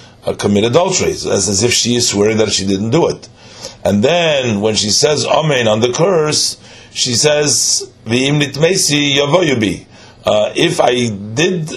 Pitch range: 110-130 Hz